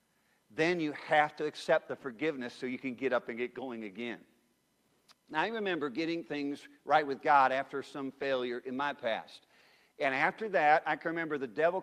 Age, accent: 50-69, American